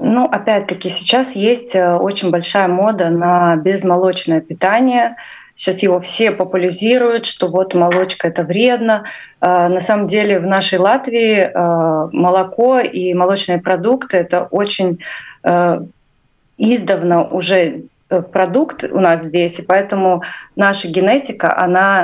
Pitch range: 175-205 Hz